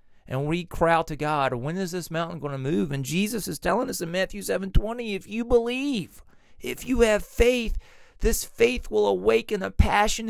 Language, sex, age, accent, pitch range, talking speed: English, male, 40-59, American, 135-205 Hz, 200 wpm